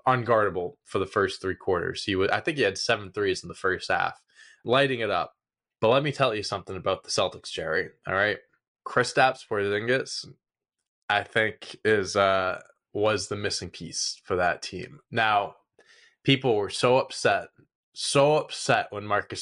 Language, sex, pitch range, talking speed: English, male, 105-135 Hz, 170 wpm